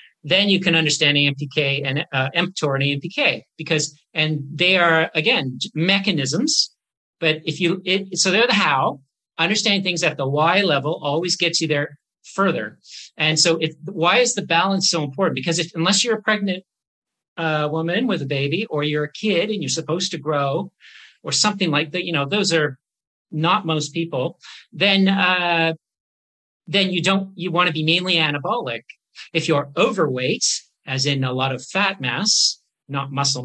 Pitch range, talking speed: 145-185 Hz, 175 wpm